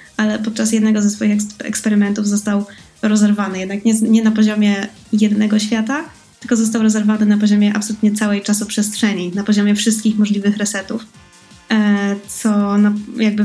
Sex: female